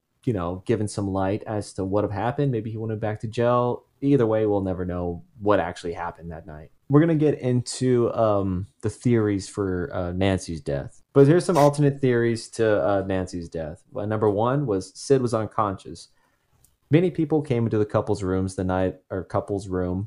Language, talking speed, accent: English, 190 wpm, American